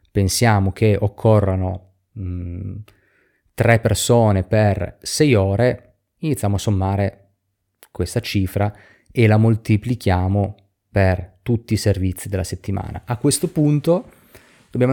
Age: 30-49